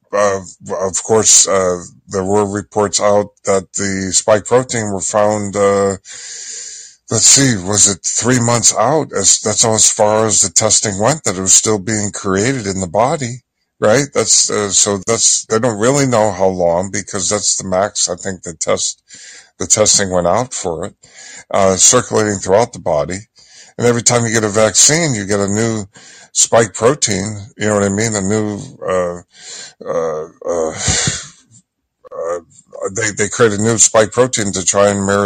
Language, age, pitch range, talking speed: English, 60-79, 95-115 Hz, 180 wpm